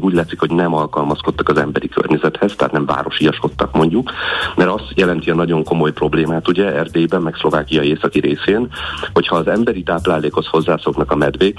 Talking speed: 165 wpm